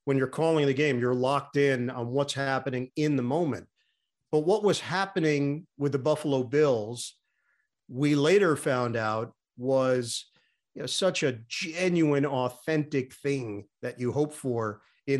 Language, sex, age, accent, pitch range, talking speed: English, male, 40-59, American, 125-150 Hz, 145 wpm